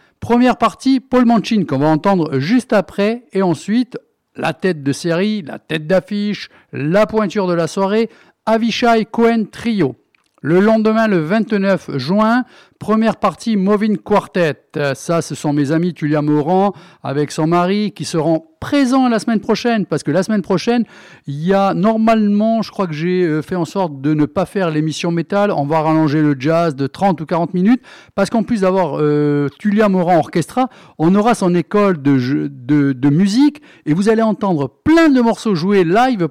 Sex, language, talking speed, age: male, French, 175 wpm, 50-69